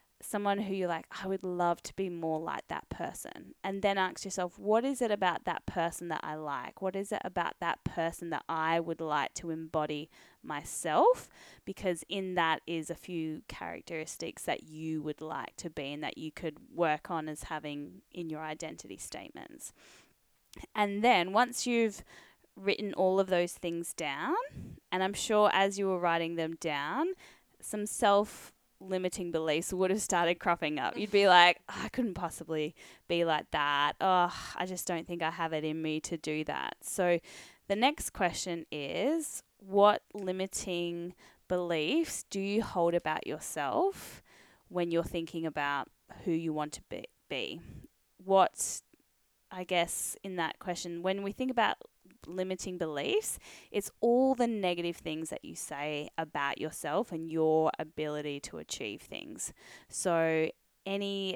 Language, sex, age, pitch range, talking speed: English, female, 10-29, 160-195 Hz, 160 wpm